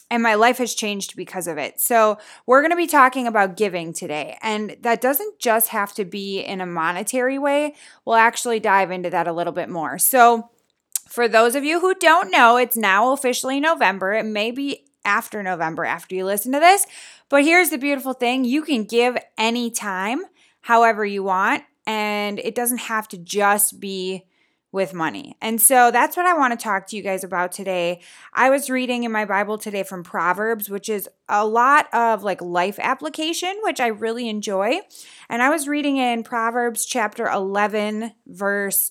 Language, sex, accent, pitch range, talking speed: English, female, American, 195-250 Hz, 190 wpm